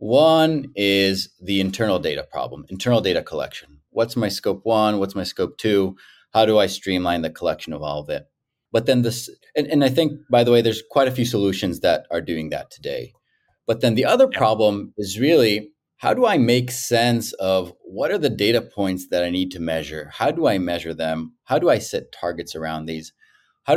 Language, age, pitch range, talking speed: English, 30-49, 90-120 Hz, 210 wpm